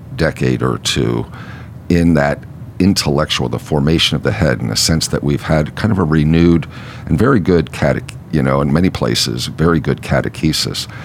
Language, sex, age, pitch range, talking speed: English, male, 50-69, 70-100 Hz, 175 wpm